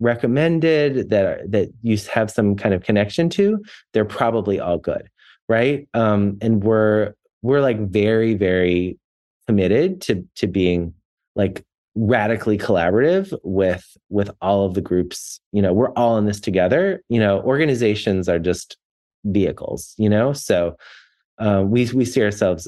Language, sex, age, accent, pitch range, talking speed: English, male, 30-49, American, 100-130 Hz, 150 wpm